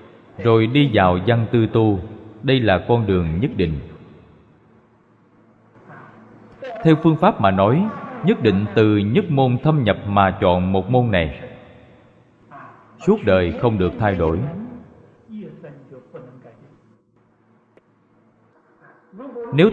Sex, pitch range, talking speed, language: male, 95-140 Hz, 110 wpm, Vietnamese